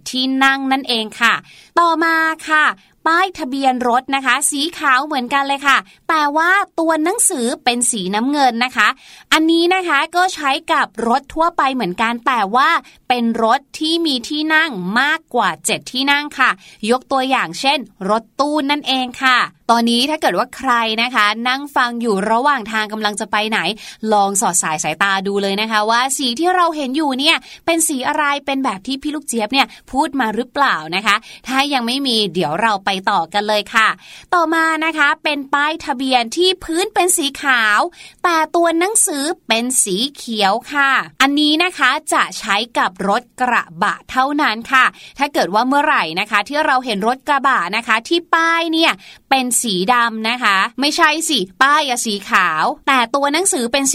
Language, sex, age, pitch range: Thai, female, 20-39, 230-305 Hz